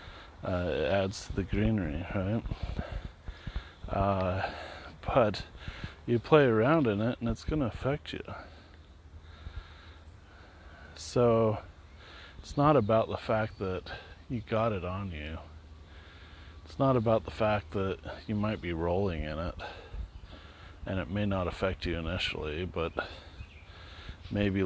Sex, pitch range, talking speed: male, 85-105 Hz, 130 wpm